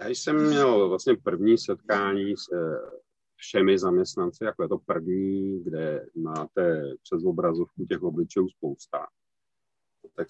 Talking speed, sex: 130 wpm, male